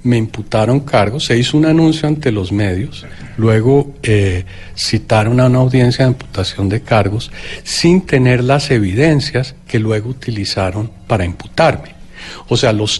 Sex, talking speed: male, 150 wpm